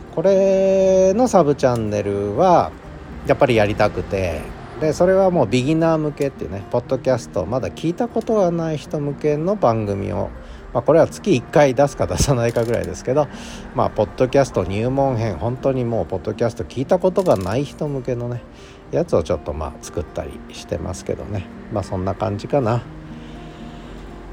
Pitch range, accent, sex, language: 100-145 Hz, native, male, Japanese